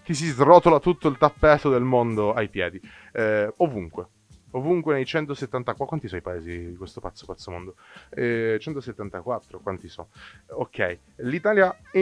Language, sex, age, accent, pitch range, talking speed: Italian, male, 30-49, native, 95-130 Hz, 155 wpm